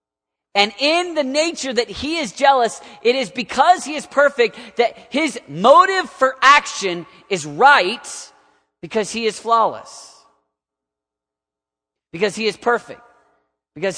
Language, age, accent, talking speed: English, 40-59, American, 130 wpm